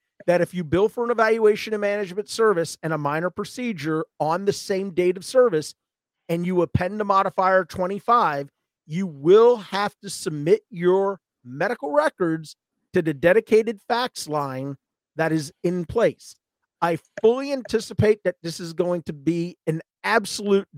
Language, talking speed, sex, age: English, 155 wpm, male, 40-59